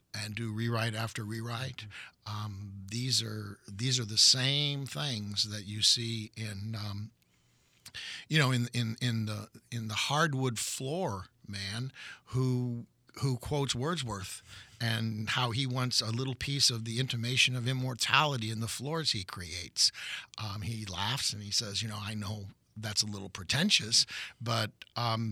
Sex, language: male, English